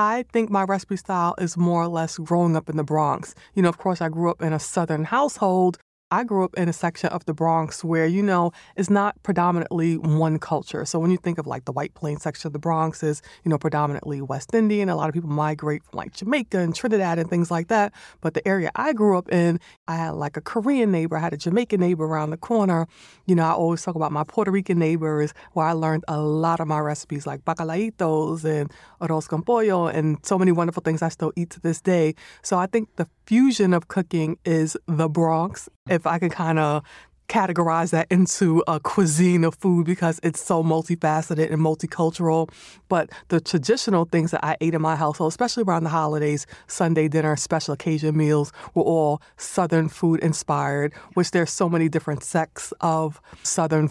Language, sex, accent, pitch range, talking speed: English, female, American, 160-190 Hz, 215 wpm